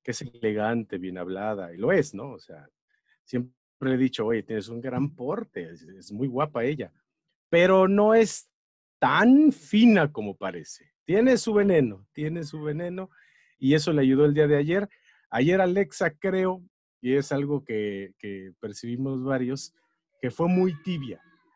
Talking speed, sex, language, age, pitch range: 165 wpm, male, Spanish, 40-59, 120-185 Hz